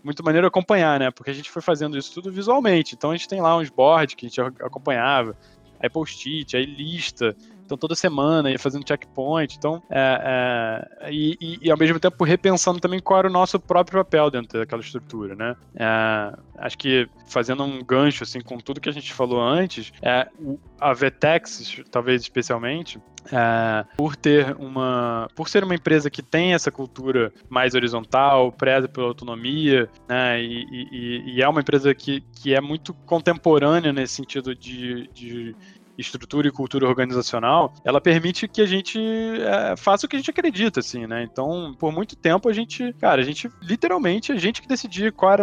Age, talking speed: 20-39, 170 wpm